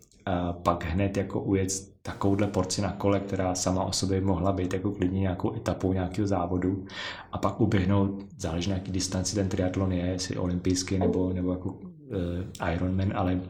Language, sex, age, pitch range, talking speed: Czech, male, 30-49, 95-105 Hz, 175 wpm